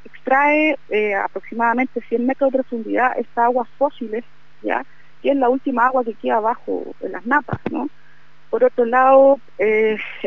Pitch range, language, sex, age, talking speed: 215-255 Hz, Spanish, female, 30-49, 150 wpm